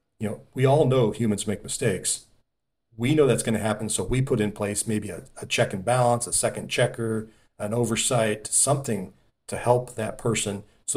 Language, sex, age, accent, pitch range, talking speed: English, male, 40-59, American, 105-130 Hz, 195 wpm